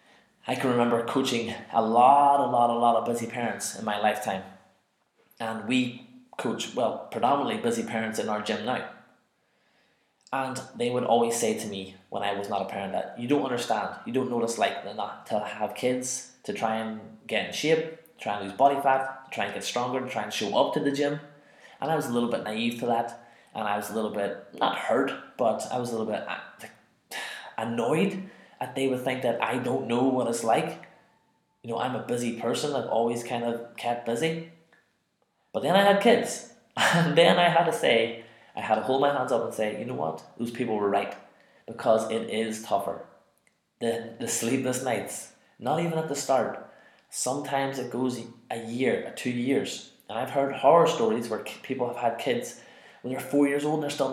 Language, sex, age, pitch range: English, male, 20-39, 115-140 Hz